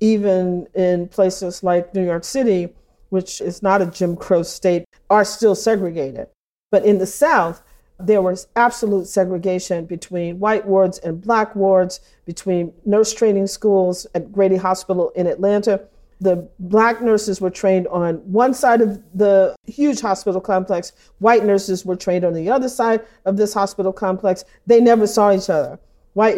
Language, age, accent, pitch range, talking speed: English, 40-59, American, 185-220 Hz, 160 wpm